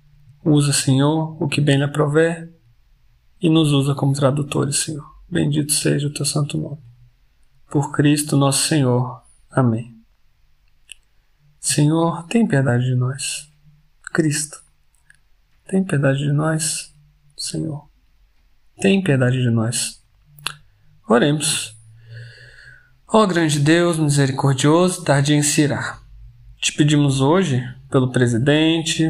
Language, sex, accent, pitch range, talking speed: Portuguese, male, Brazilian, 130-160 Hz, 110 wpm